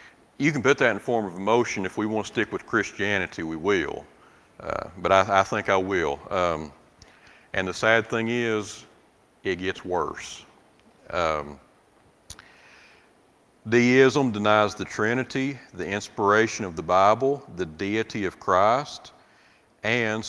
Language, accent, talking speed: English, American, 140 wpm